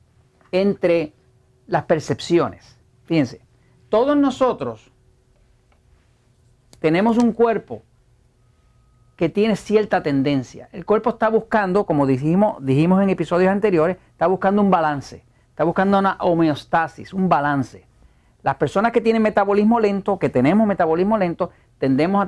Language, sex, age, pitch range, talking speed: Spanish, male, 50-69, 140-210 Hz, 120 wpm